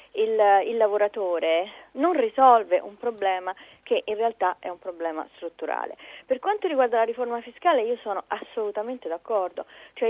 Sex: female